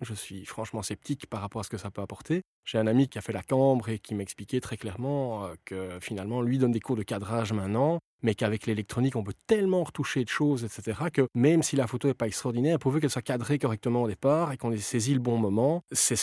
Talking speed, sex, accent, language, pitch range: 250 wpm, male, French, French, 110-140 Hz